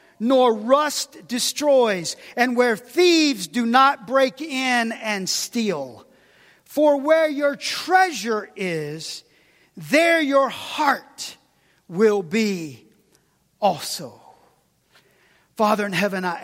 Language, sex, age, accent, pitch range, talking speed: English, male, 40-59, American, 155-210 Hz, 100 wpm